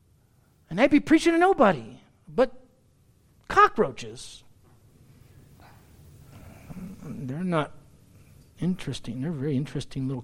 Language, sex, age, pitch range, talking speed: English, male, 50-69, 120-185 Hz, 90 wpm